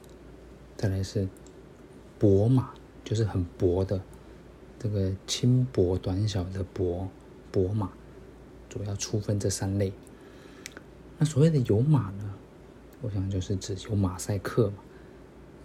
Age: 20-39